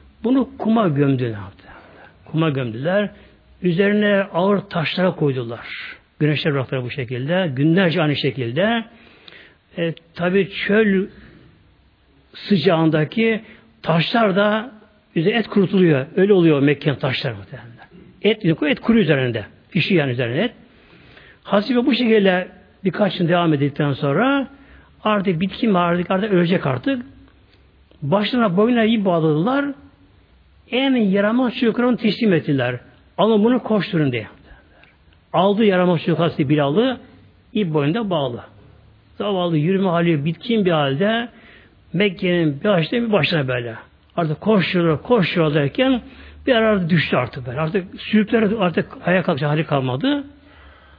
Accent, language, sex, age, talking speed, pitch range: native, Turkish, male, 60-79, 110 wpm, 140-210 Hz